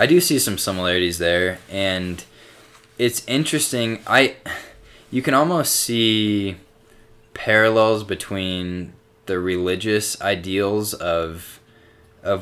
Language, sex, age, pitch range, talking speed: English, male, 20-39, 90-110 Hz, 100 wpm